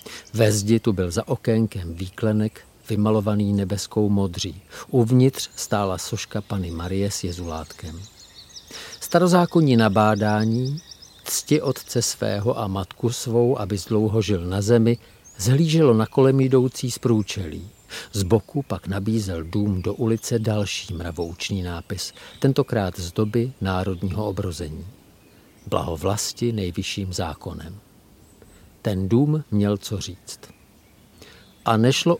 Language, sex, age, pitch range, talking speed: Czech, male, 50-69, 95-125 Hz, 115 wpm